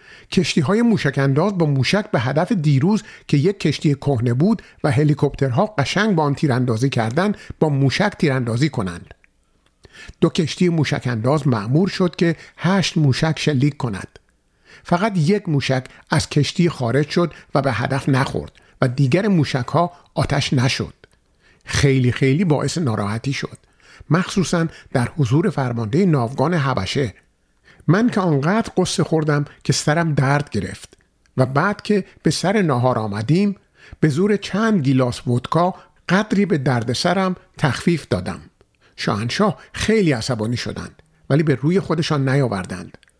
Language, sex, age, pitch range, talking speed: Persian, male, 50-69, 130-180 Hz, 140 wpm